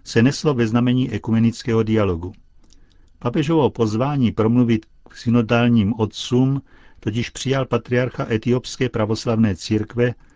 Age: 50-69